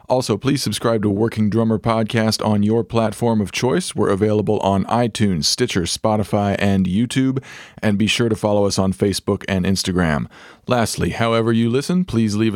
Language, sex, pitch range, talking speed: English, male, 95-110 Hz, 170 wpm